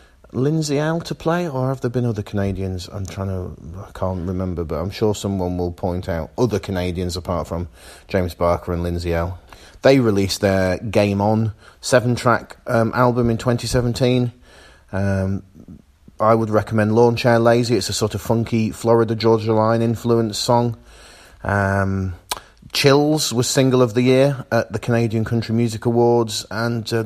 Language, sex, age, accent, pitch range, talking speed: English, male, 30-49, British, 95-120 Hz, 165 wpm